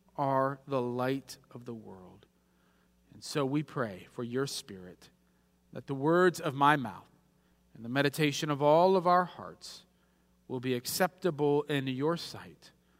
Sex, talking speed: male, 150 wpm